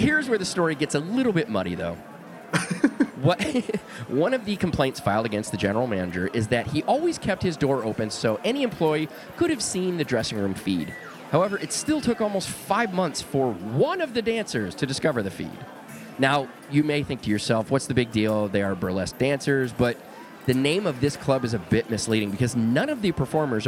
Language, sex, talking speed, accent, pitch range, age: English, male, 210 wpm, American, 110-175 Hz, 30-49